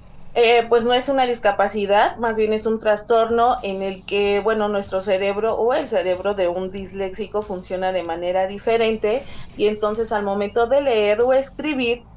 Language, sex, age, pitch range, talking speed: Spanish, female, 30-49, 190-235 Hz, 175 wpm